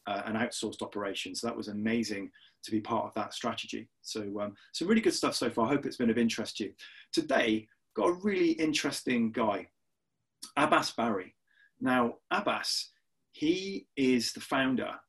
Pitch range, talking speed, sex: 110-145 Hz, 175 wpm, male